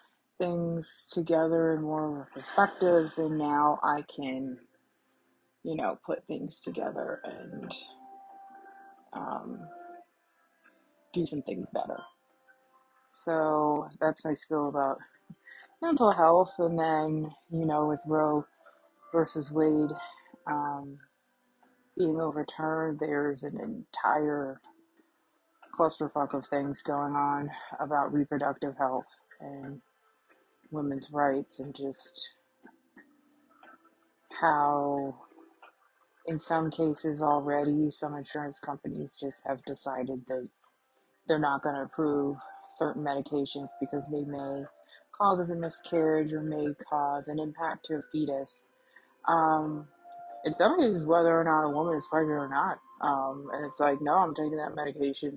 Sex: female